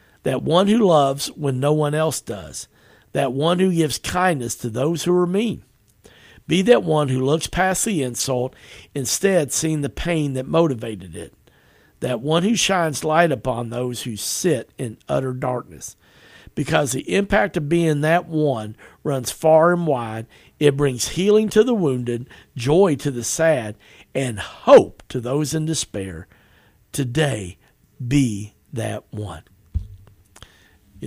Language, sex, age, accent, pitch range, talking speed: English, male, 50-69, American, 110-155 Hz, 150 wpm